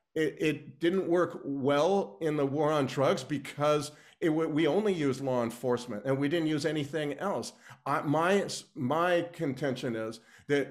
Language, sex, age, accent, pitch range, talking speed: English, male, 40-59, American, 130-160 Hz, 160 wpm